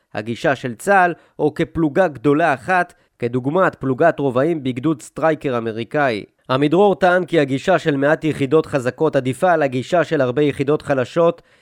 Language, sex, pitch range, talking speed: Hebrew, male, 130-170 Hz, 145 wpm